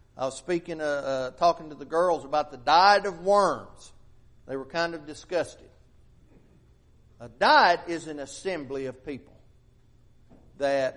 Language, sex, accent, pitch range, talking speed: English, male, American, 120-170 Hz, 150 wpm